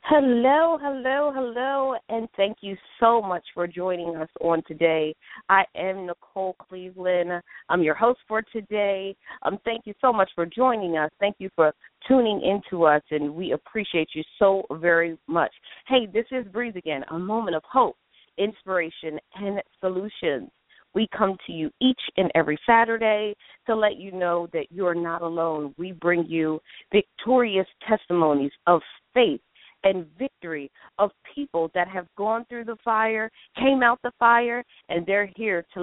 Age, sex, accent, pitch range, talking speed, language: 40-59, female, American, 175-230 Hz, 165 wpm, English